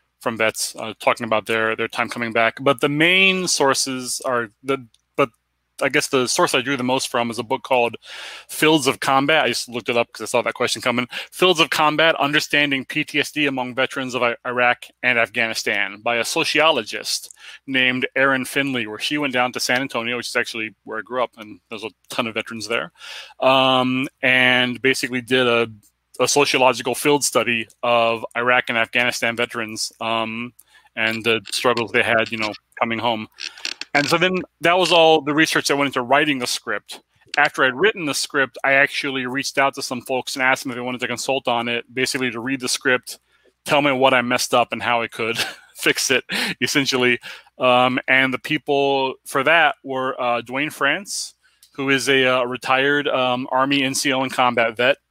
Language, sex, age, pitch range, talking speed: English, male, 30-49, 120-140 Hz, 200 wpm